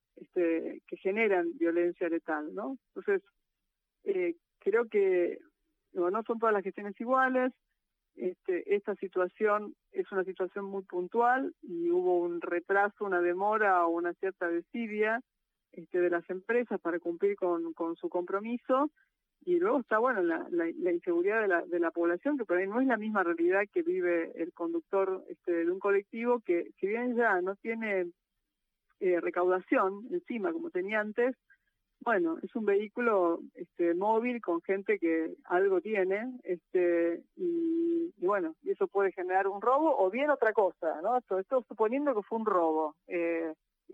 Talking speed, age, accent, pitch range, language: 155 wpm, 40-59, Argentinian, 180-270 Hz, Spanish